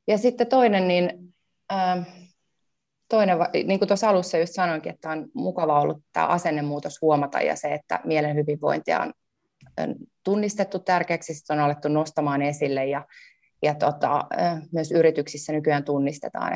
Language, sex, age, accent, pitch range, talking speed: Finnish, female, 30-49, native, 150-180 Hz, 145 wpm